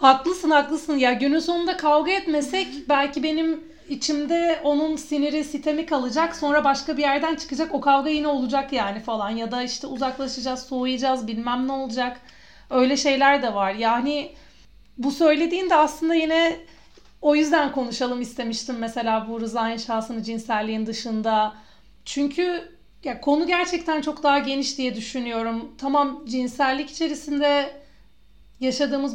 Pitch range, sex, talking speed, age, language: 245-300 Hz, female, 135 wpm, 40-59, Turkish